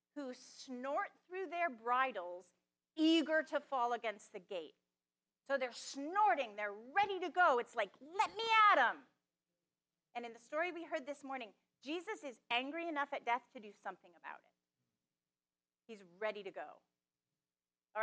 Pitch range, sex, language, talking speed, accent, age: 175-285 Hz, female, English, 160 wpm, American, 30-49